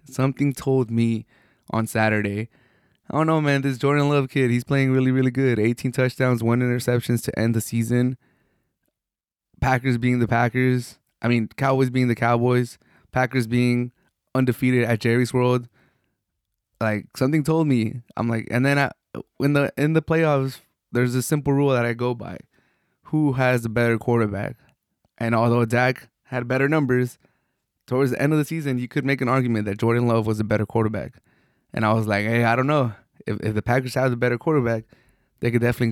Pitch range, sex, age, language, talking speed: 115-130 Hz, male, 20-39, English, 185 wpm